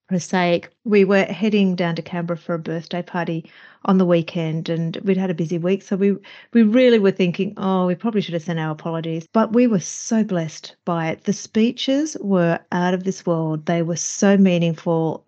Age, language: 40-59, English